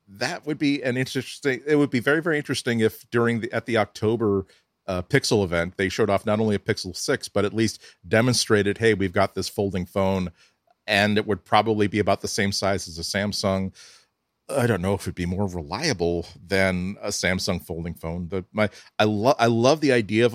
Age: 40-59